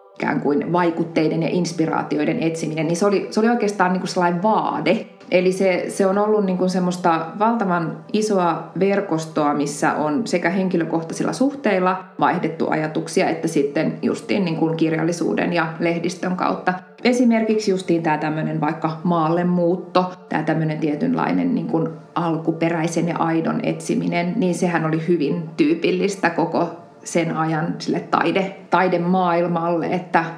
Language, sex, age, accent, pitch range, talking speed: Finnish, female, 20-39, native, 160-185 Hz, 130 wpm